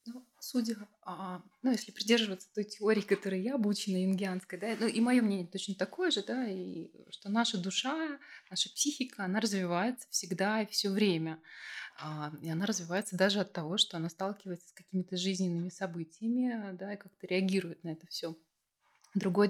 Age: 20-39